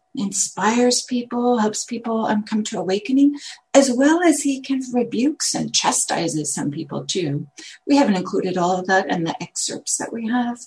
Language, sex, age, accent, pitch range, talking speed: English, female, 50-69, American, 170-255 Hz, 180 wpm